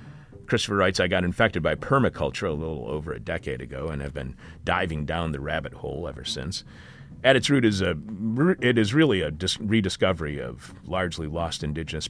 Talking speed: 185 wpm